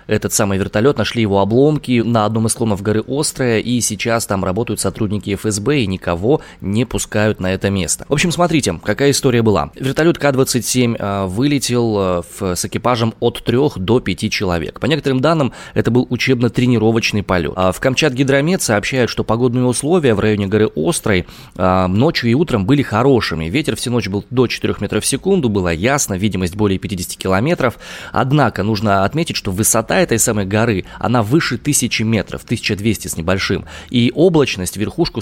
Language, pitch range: Russian, 100-130 Hz